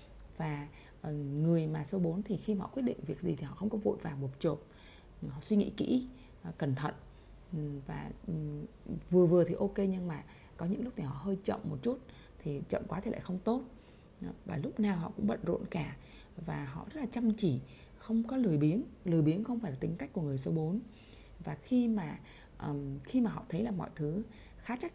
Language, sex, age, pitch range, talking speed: Vietnamese, female, 20-39, 150-215 Hz, 220 wpm